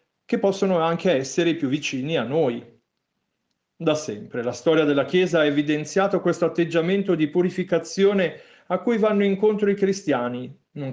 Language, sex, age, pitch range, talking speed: Italian, male, 40-59, 130-185 Hz, 150 wpm